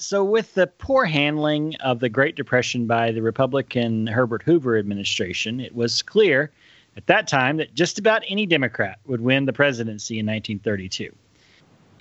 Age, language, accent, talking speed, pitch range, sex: 30-49, English, American, 160 wpm, 115-150 Hz, male